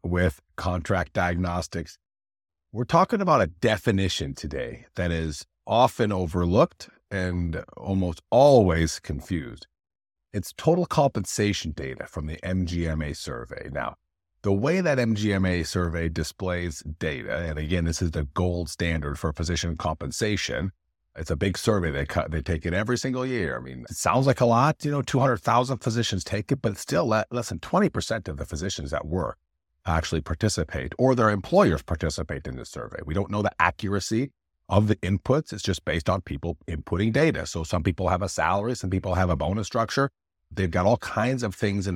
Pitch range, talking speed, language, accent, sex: 80-105 Hz, 175 wpm, English, American, male